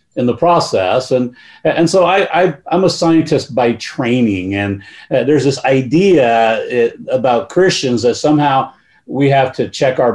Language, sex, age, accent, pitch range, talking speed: English, male, 50-69, American, 125-175 Hz, 165 wpm